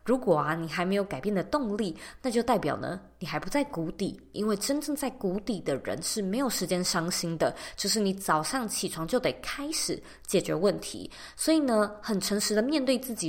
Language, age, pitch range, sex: Chinese, 20-39, 170-220 Hz, female